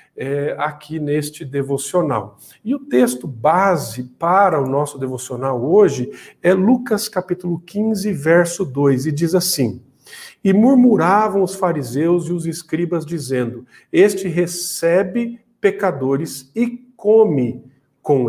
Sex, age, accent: male, 50-69, Brazilian